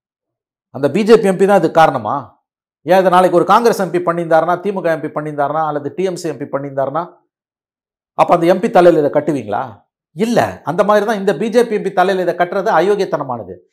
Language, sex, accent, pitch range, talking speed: Tamil, male, native, 125-170 Hz, 160 wpm